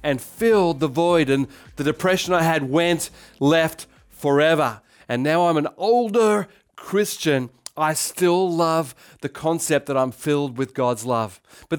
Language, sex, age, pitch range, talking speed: English, male, 40-59, 135-170 Hz, 155 wpm